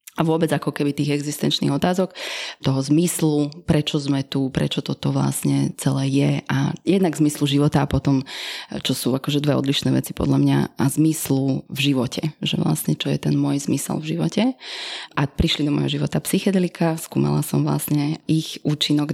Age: 30-49